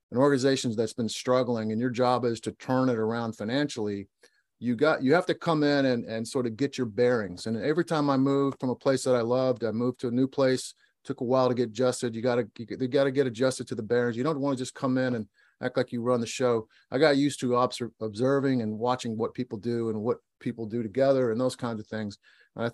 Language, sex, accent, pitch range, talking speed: English, male, American, 110-130 Hz, 260 wpm